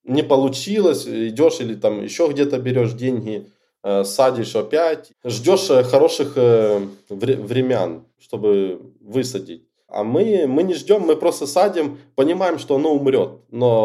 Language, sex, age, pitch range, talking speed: Russian, male, 20-39, 110-140 Hz, 125 wpm